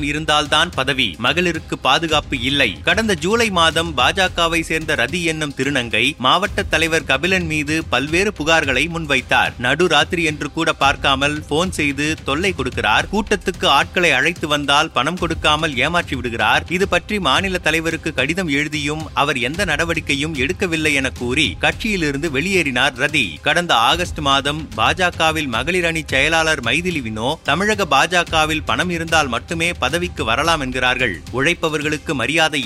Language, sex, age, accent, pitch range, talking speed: Tamil, male, 30-49, native, 140-165 Hz, 115 wpm